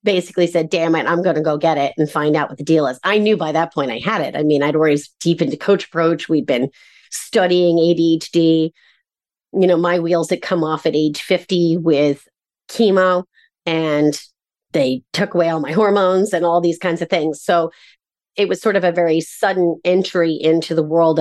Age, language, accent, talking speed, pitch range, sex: 30-49, English, American, 210 wpm, 155-185 Hz, female